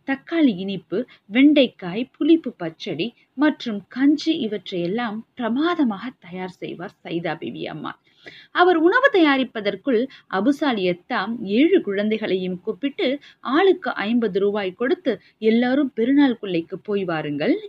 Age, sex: 20-39, female